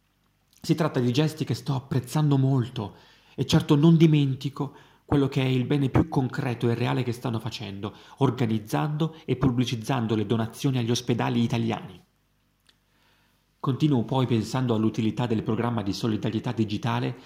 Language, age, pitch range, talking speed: Italian, 40-59, 115-135 Hz, 145 wpm